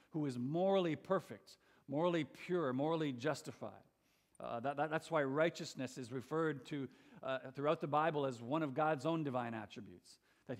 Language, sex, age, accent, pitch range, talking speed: English, male, 50-69, American, 130-170 Hz, 155 wpm